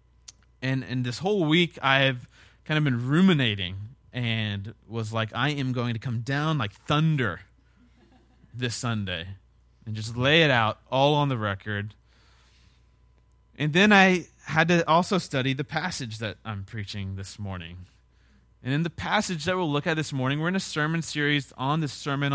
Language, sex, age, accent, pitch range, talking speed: English, male, 20-39, American, 115-165 Hz, 170 wpm